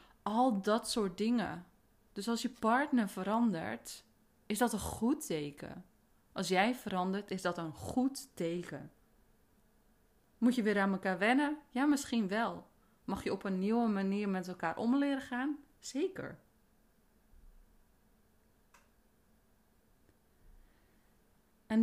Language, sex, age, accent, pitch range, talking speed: Dutch, female, 20-39, Dutch, 185-240 Hz, 120 wpm